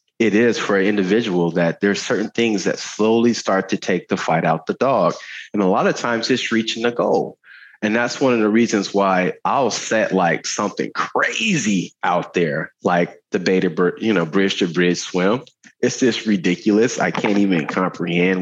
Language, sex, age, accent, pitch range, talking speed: English, male, 30-49, American, 95-120 Hz, 190 wpm